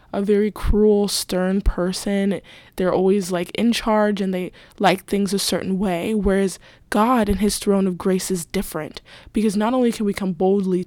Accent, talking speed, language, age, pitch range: American, 180 wpm, English, 20-39, 175-200 Hz